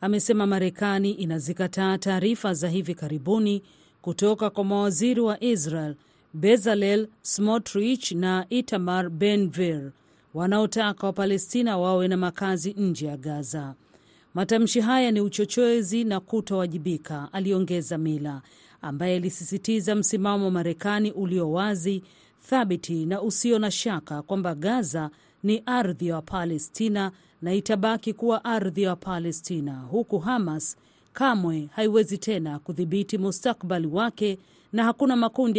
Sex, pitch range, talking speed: female, 175-220 Hz, 115 wpm